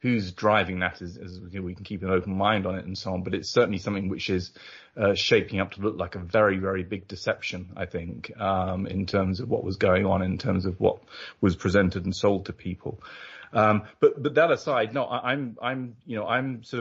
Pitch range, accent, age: 95-105 Hz, British, 30-49